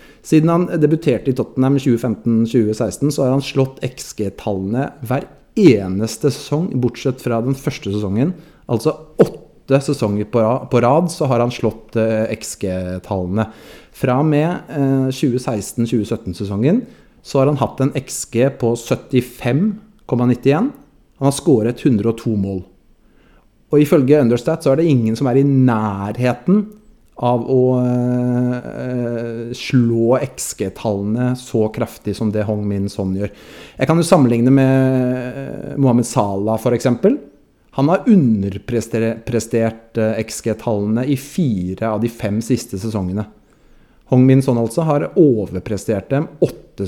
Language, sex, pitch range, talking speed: English, male, 110-145 Hz, 130 wpm